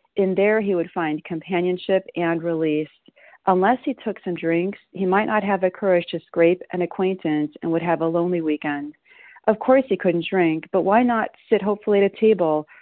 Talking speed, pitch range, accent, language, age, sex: 195 wpm, 165-195 Hz, American, English, 40-59, female